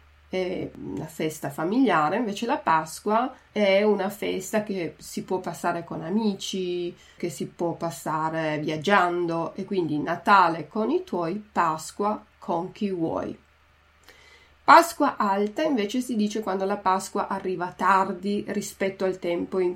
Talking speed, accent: 135 wpm, native